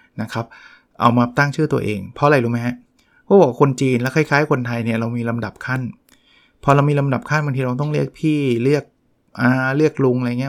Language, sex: Thai, male